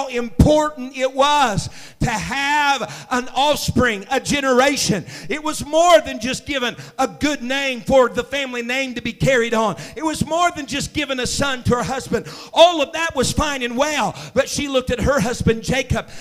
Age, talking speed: 50-69, 190 wpm